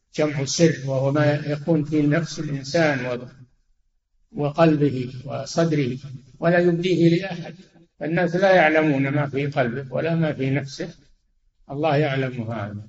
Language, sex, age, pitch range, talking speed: Arabic, male, 60-79, 140-165 Hz, 120 wpm